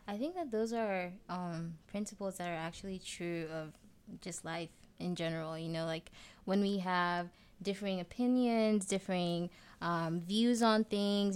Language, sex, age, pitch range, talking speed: English, female, 20-39, 170-205 Hz, 155 wpm